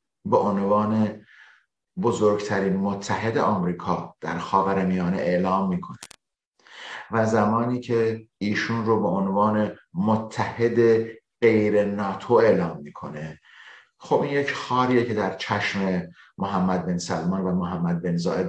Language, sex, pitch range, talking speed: Persian, male, 100-120 Hz, 115 wpm